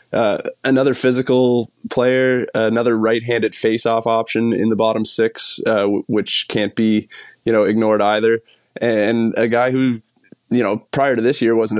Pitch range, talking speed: 110-120 Hz, 165 wpm